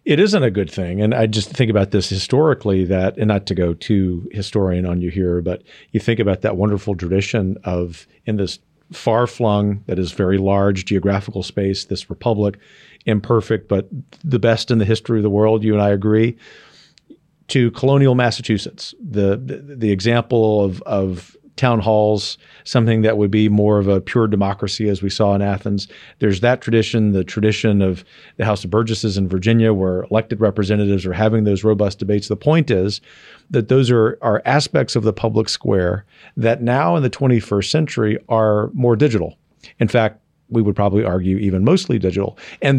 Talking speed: 185 wpm